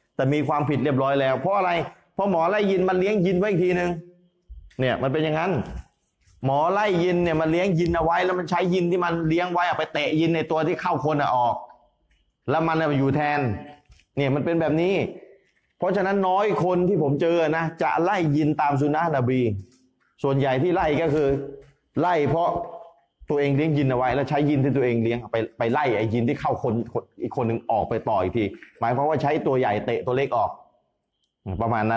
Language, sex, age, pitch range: Thai, male, 20-39, 115-165 Hz